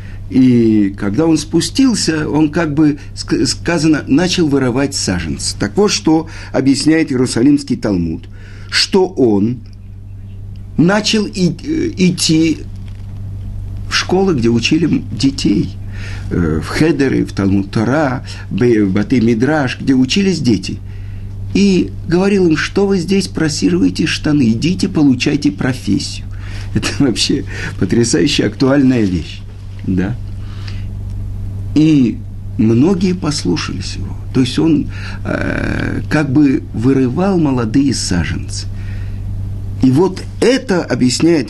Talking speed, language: 105 wpm, Russian